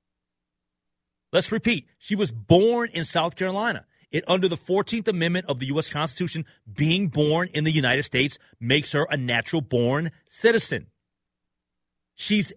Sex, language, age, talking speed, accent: male, English, 40-59, 140 wpm, American